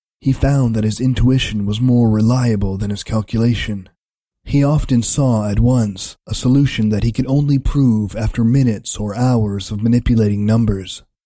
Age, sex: 20-39, male